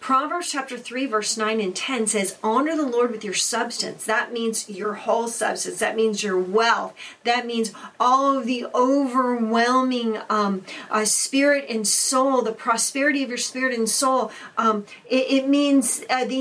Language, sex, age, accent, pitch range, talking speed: English, female, 40-59, American, 210-265 Hz, 170 wpm